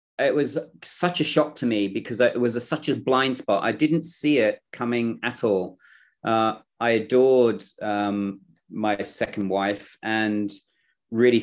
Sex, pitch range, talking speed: male, 110-130 Hz, 165 wpm